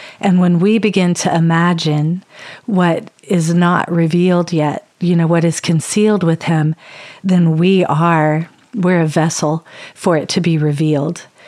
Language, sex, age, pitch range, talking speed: English, female, 40-59, 160-185 Hz, 145 wpm